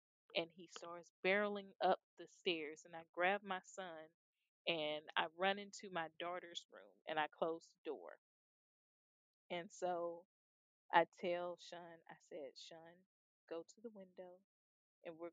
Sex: female